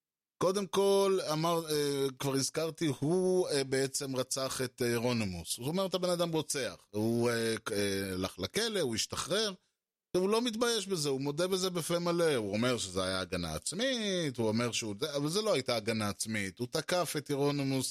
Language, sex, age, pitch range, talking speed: Hebrew, male, 20-39, 110-135 Hz, 170 wpm